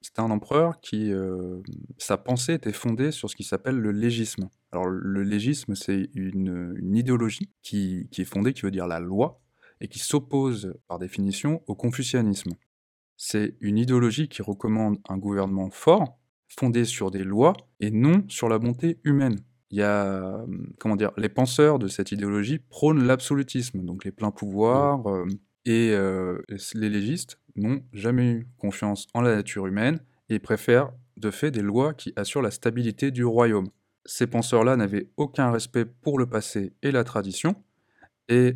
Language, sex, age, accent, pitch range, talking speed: French, male, 20-39, French, 100-130 Hz, 170 wpm